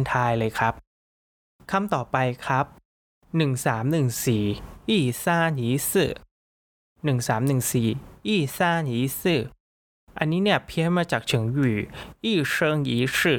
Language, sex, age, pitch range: Thai, male, 20-39, 120-150 Hz